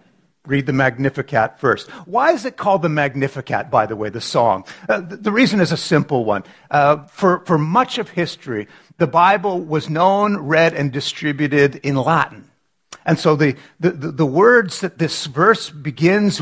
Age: 50-69